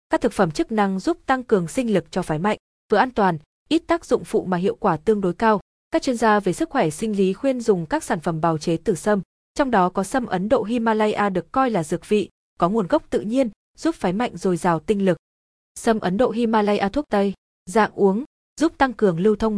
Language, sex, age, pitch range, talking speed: Vietnamese, female, 20-39, 185-240 Hz, 245 wpm